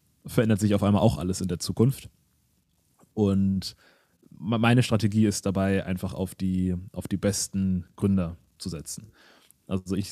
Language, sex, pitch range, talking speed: German, male, 95-110 Hz, 140 wpm